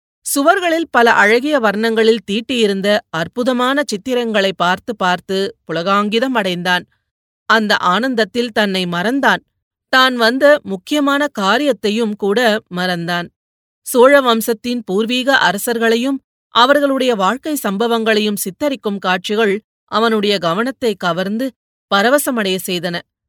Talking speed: 90 wpm